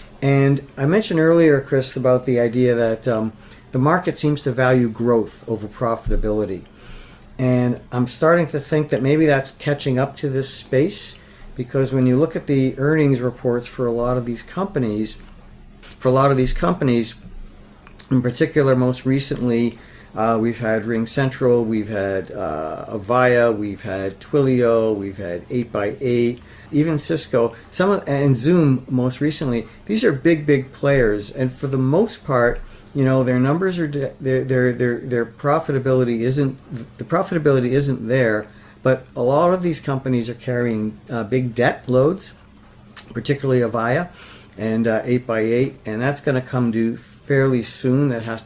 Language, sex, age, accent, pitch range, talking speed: English, male, 50-69, American, 115-140 Hz, 160 wpm